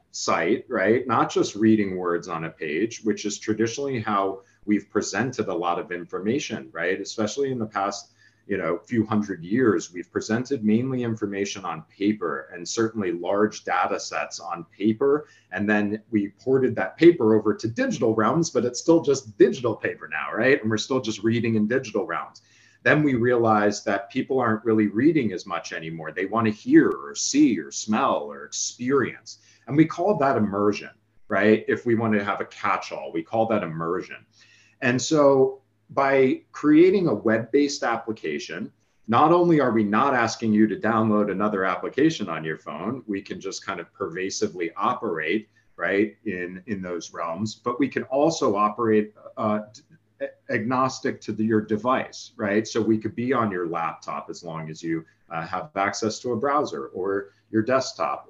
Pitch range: 105-130 Hz